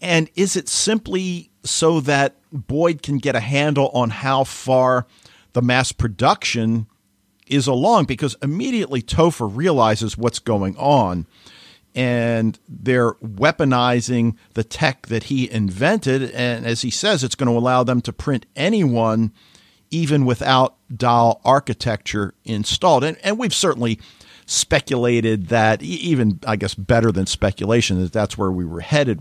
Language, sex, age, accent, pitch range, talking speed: English, male, 50-69, American, 110-145 Hz, 140 wpm